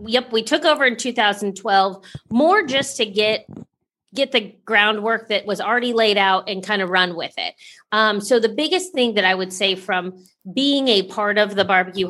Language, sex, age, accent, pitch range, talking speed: English, female, 30-49, American, 195-250 Hz, 200 wpm